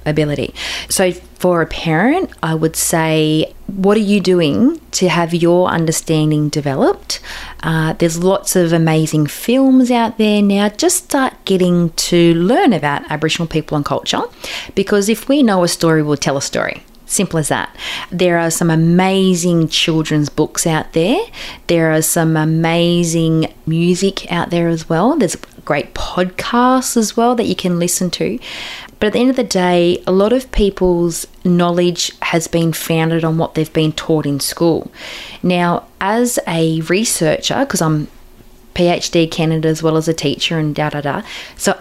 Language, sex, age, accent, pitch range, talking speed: English, female, 30-49, Australian, 155-185 Hz, 165 wpm